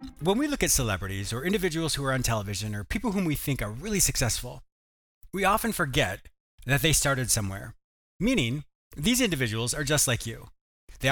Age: 30-49